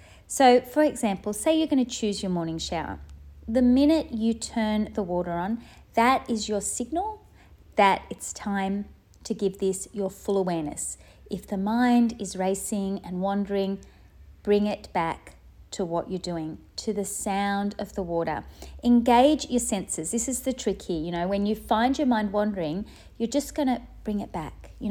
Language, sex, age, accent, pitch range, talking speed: English, female, 30-49, Australian, 190-240 Hz, 180 wpm